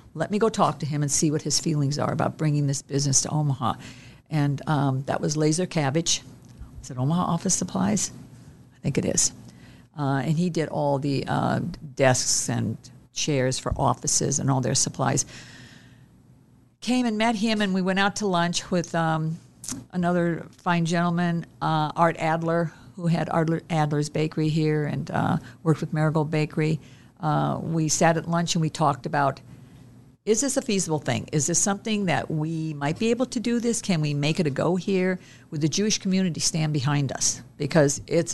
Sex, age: female, 50-69